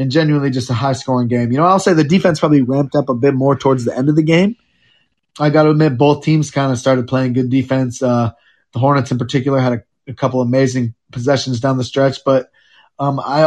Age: 20-39